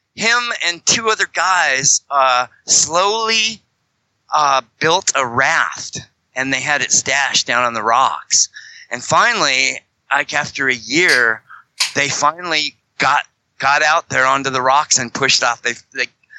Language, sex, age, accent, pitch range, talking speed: English, male, 30-49, American, 115-150 Hz, 145 wpm